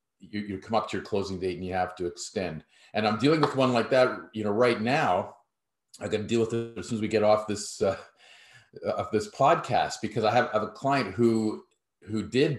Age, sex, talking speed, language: 40-59, male, 245 wpm, English